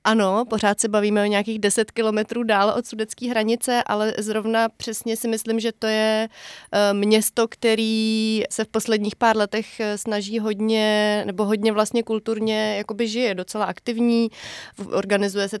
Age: 30-49